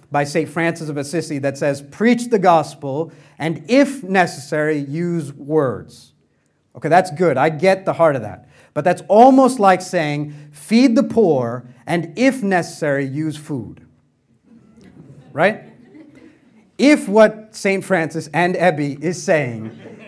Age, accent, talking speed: 40-59, American, 135 wpm